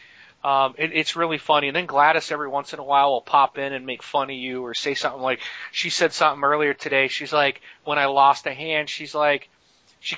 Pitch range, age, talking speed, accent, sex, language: 135-170 Hz, 30-49, 235 wpm, American, male, English